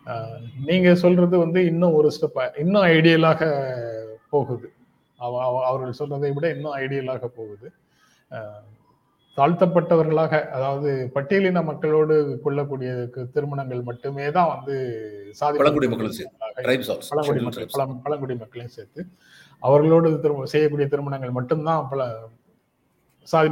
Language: Tamil